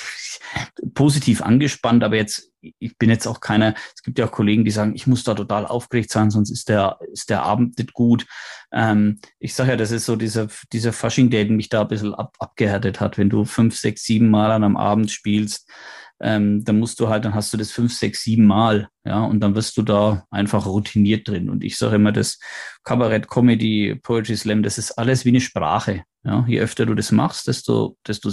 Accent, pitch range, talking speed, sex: German, 105-115 Hz, 220 wpm, male